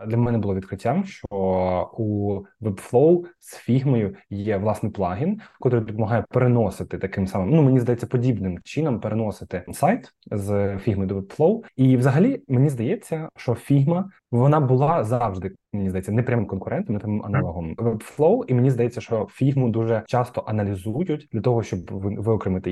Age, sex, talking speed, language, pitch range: 20-39, male, 150 wpm, Ukrainian, 100-130 Hz